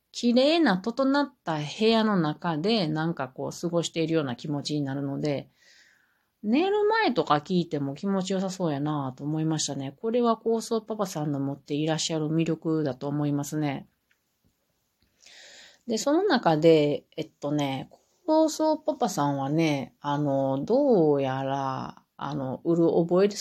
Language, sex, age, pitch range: Japanese, female, 30-49, 145-215 Hz